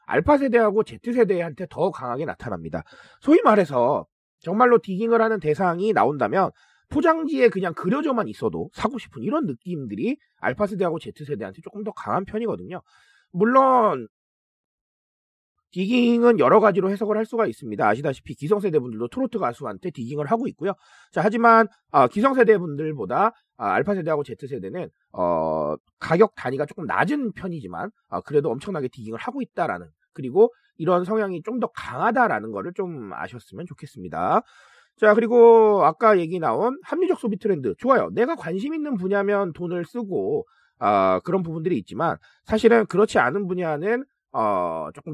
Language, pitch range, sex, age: Korean, 175-240 Hz, male, 30-49